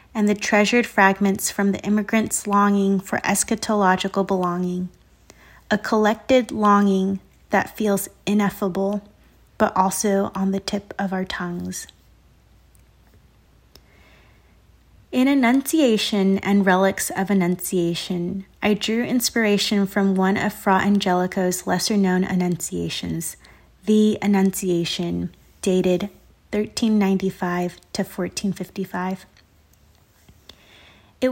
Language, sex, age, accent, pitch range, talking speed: English, female, 30-49, American, 185-210 Hz, 95 wpm